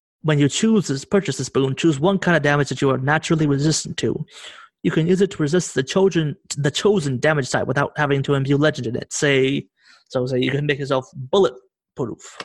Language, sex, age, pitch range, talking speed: English, male, 30-49, 135-165 Hz, 215 wpm